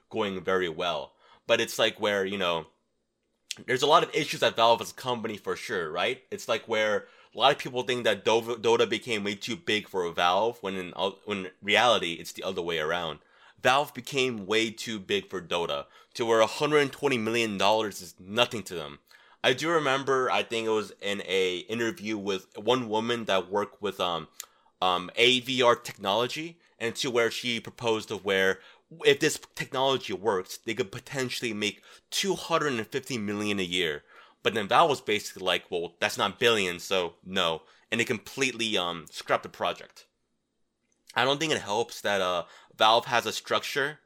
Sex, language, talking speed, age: male, English, 185 wpm, 20-39